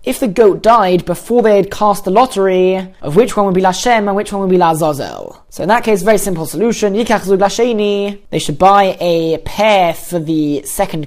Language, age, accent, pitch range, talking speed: English, 20-39, British, 175-215 Hz, 205 wpm